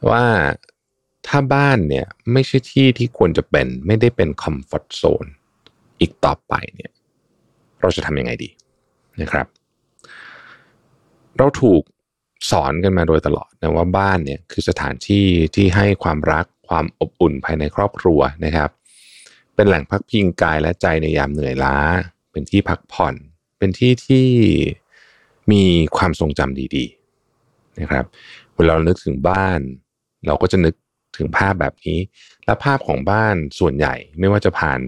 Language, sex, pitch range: Thai, male, 75-100 Hz